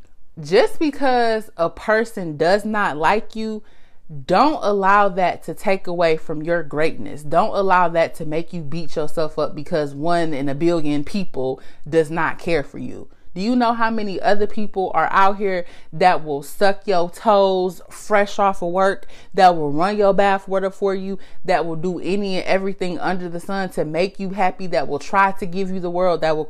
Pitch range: 165-215 Hz